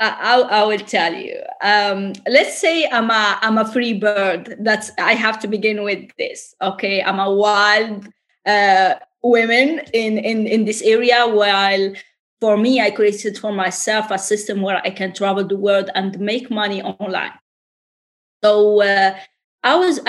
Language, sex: English, female